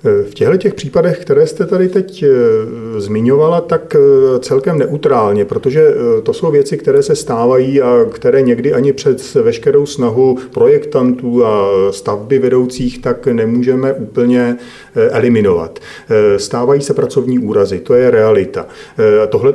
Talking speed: 125 wpm